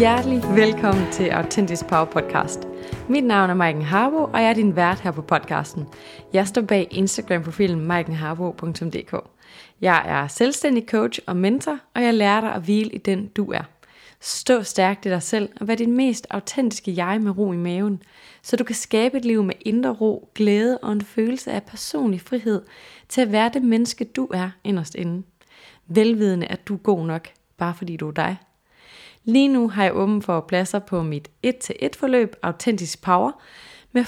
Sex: female